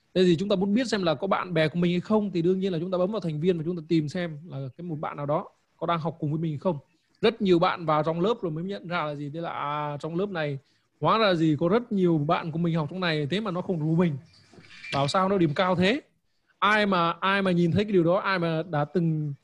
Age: 20-39